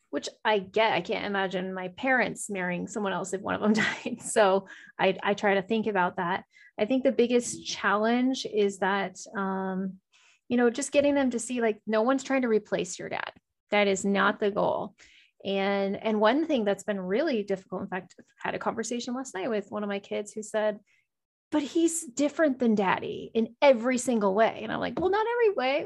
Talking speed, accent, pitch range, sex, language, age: 210 wpm, American, 200-255 Hz, female, English, 20-39